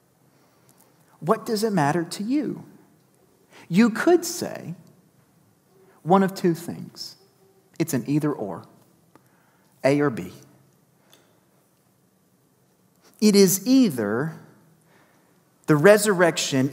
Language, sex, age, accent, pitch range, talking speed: English, male, 40-59, American, 150-200 Hz, 90 wpm